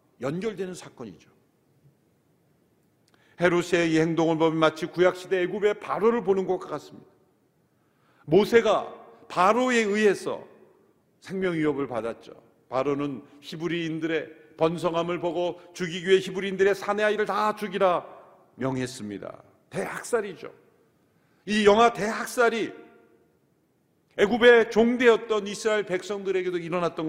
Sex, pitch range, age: male, 150-205 Hz, 50-69